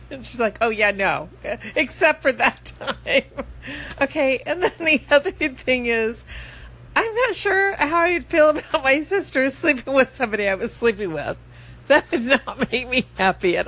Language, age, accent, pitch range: English, 40-59, American, 190-270 Hz